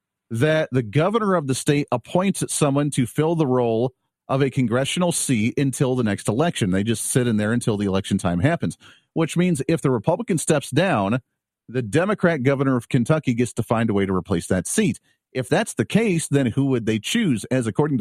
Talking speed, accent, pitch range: 205 wpm, American, 115-150 Hz